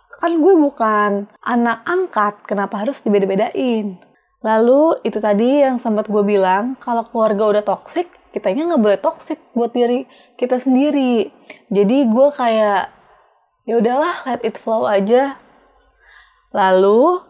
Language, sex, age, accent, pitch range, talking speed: Indonesian, female, 20-39, native, 210-265 Hz, 130 wpm